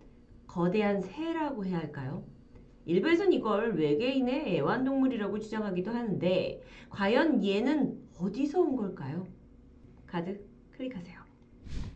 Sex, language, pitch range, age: female, Korean, 180-270 Hz, 40-59